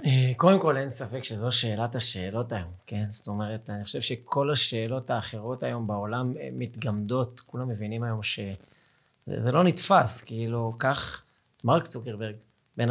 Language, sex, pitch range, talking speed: Hebrew, male, 110-145 Hz, 140 wpm